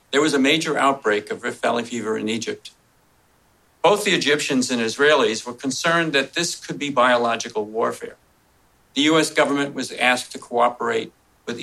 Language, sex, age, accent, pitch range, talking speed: English, male, 50-69, American, 120-150 Hz, 165 wpm